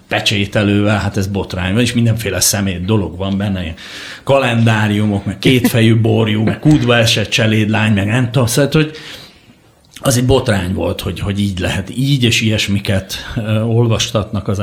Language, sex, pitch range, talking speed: Hungarian, male, 100-125 Hz, 150 wpm